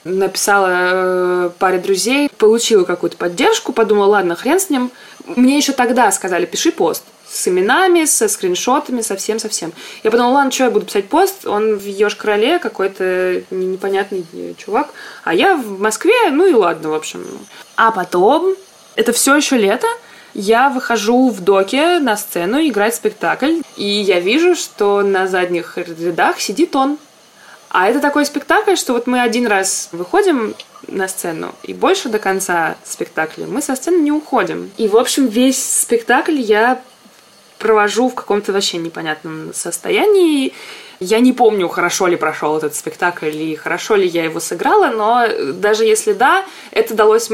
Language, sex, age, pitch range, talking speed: Russian, female, 20-39, 185-280 Hz, 155 wpm